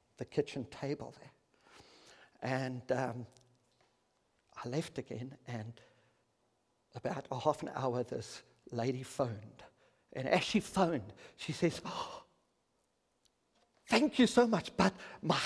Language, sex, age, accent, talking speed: English, male, 50-69, British, 115 wpm